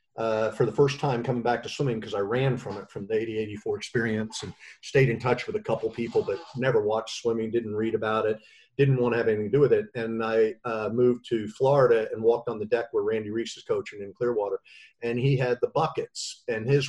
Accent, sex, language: American, male, English